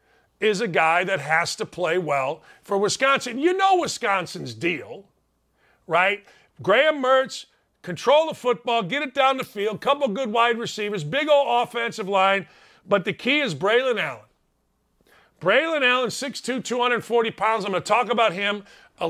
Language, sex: English, male